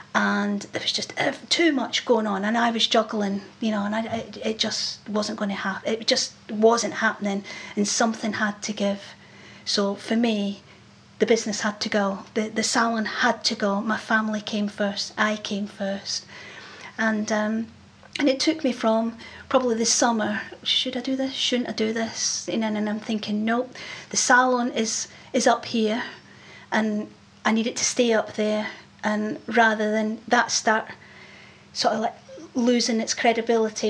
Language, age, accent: English, 40-59, British